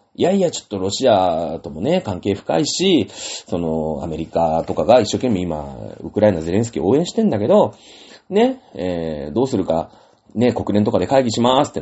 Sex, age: male, 30-49